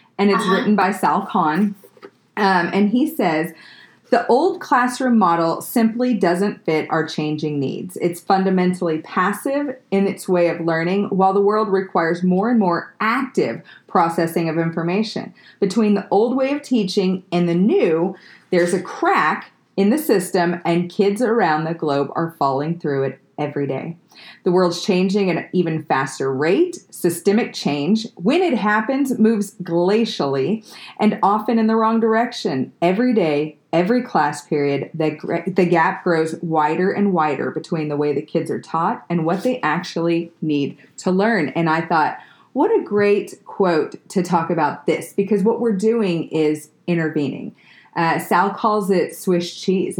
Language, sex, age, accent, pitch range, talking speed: English, female, 30-49, American, 165-215 Hz, 165 wpm